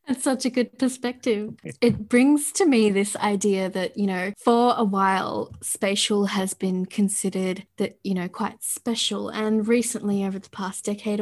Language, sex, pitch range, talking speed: English, female, 190-215 Hz, 170 wpm